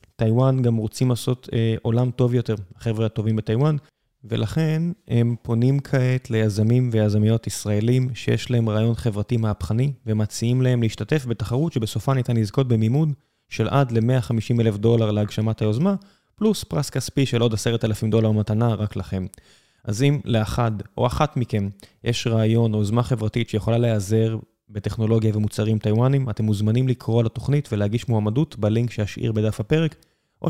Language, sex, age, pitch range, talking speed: Hebrew, male, 20-39, 105-125 Hz, 145 wpm